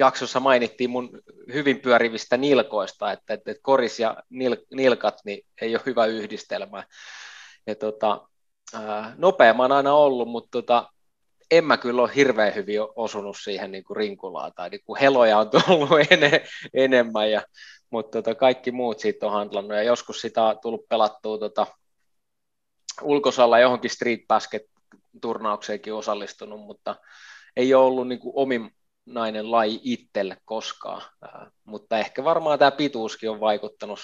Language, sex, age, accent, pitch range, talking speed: Finnish, male, 20-39, native, 110-130 Hz, 130 wpm